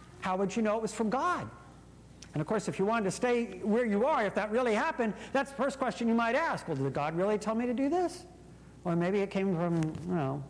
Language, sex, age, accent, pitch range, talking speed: English, male, 50-69, American, 190-270 Hz, 265 wpm